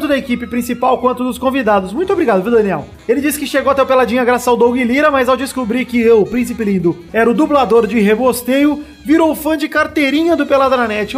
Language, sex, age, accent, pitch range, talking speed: Portuguese, male, 30-49, Brazilian, 205-270 Hz, 215 wpm